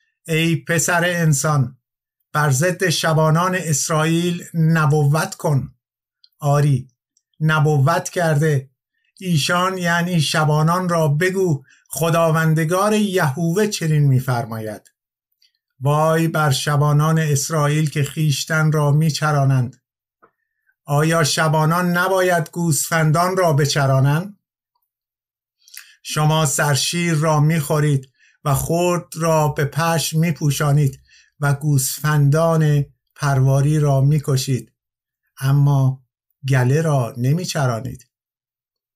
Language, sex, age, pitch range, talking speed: Persian, male, 50-69, 140-165 Hz, 85 wpm